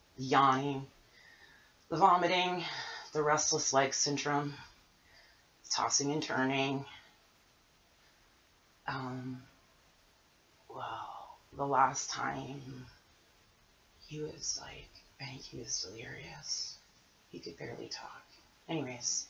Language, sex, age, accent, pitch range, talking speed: English, female, 30-49, American, 125-140 Hz, 85 wpm